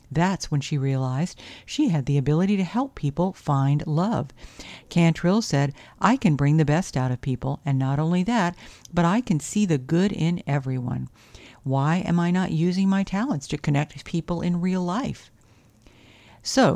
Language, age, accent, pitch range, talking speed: English, 50-69, American, 135-175 Hz, 175 wpm